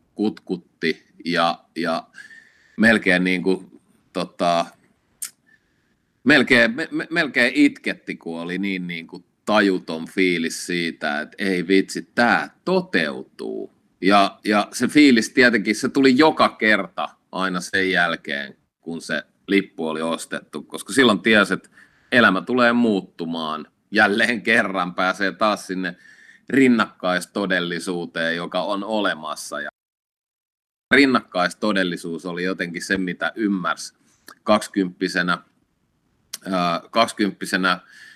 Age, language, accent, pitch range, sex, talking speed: 30-49, Finnish, native, 90-105 Hz, male, 105 wpm